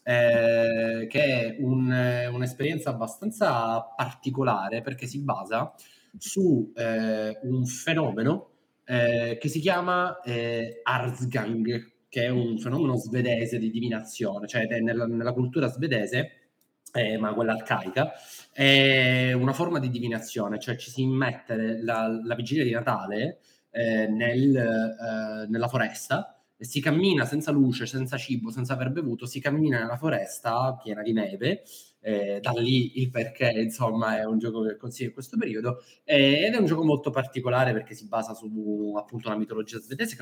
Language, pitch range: Italian, 110-130 Hz